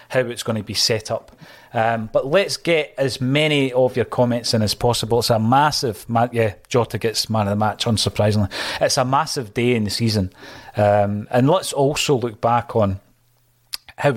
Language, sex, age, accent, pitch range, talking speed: English, male, 30-49, British, 110-130 Hz, 190 wpm